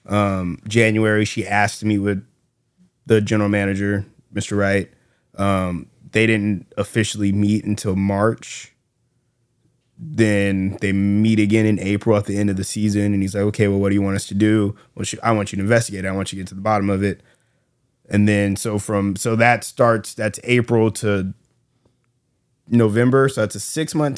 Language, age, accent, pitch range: English, 20-39, American, 105-125 Hz